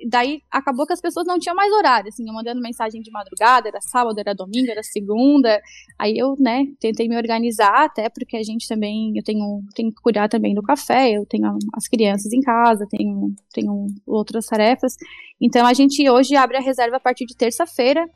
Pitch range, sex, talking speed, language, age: 220-265 Hz, female, 200 wpm, Portuguese, 10-29